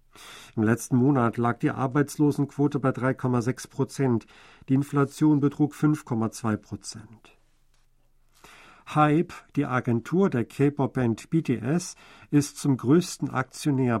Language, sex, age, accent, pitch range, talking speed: German, male, 50-69, German, 125-145 Hz, 105 wpm